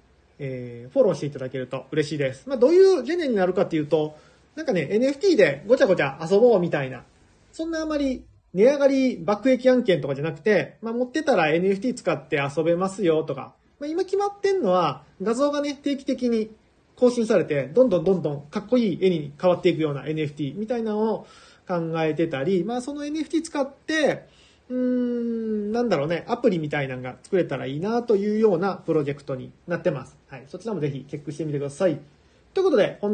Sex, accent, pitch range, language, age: male, native, 160-255 Hz, Japanese, 30-49